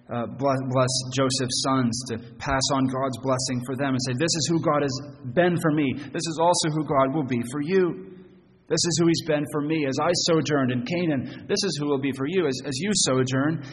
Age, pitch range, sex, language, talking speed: 30-49, 115-145 Hz, male, English, 235 wpm